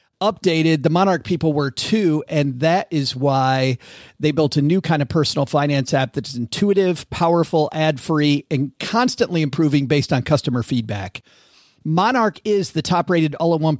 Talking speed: 160 wpm